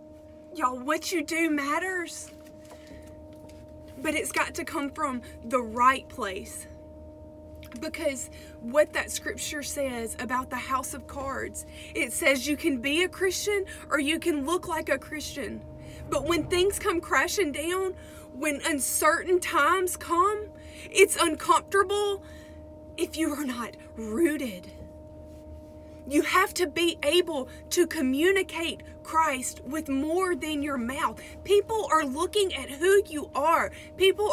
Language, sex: English, female